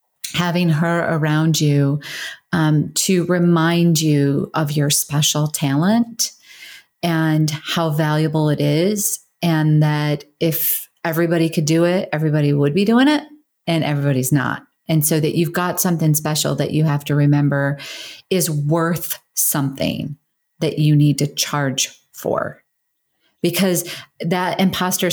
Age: 30-49